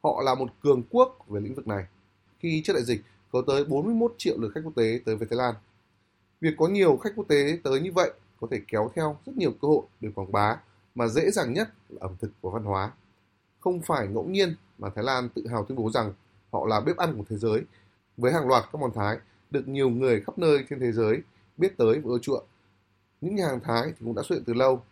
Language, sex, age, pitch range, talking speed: Vietnamese, male, 20-39, 100-140 Hz, 250 wpm